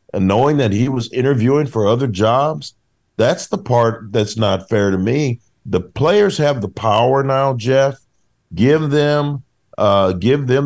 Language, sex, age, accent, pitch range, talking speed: English, male, 50-69, American, 100-140 Hz, 165 wpm